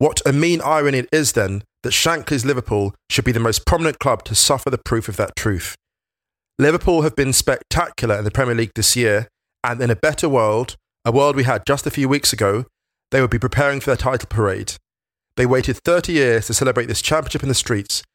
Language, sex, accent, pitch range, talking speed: English, male, British, 110-140 Hz, 220 wpm